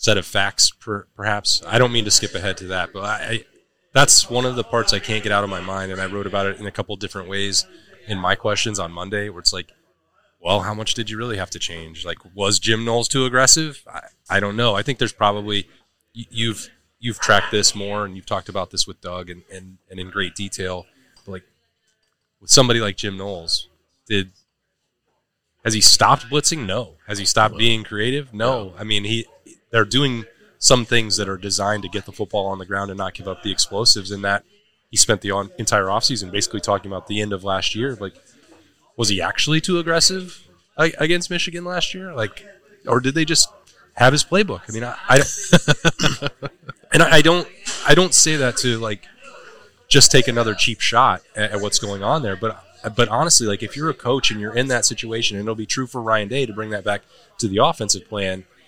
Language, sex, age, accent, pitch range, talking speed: English, male, 20-39, American, 100-125 Hz, 220 wpm